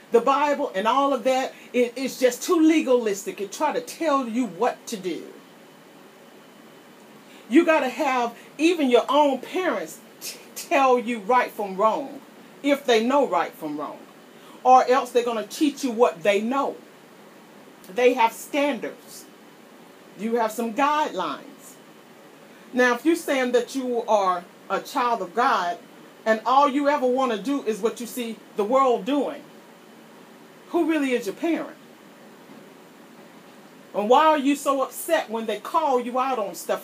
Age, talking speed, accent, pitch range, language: 40-59, 160 wpm, American, 225-290 Hz, English